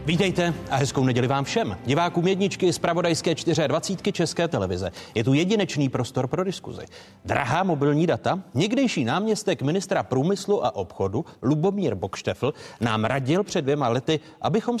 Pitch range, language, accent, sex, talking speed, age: 130-185 Hz, Czech, native, male, 145 wpm, 40-59